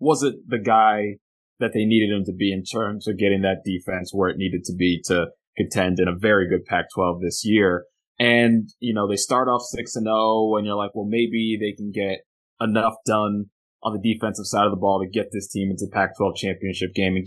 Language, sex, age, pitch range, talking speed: English, male, 20-39, 100-120 Hz, 220 wpm